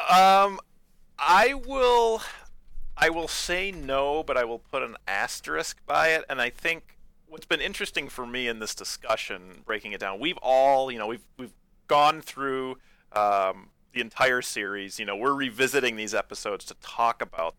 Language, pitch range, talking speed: English, 110-155 Hz, 170 wpm